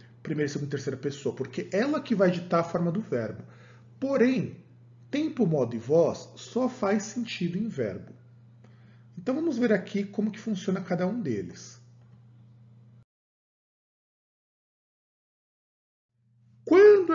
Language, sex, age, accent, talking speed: Portuguese, male, 40-59, Brazilian, 125 wpm